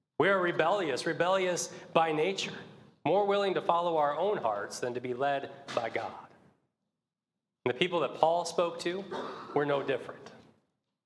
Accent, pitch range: American, 140-175 Hz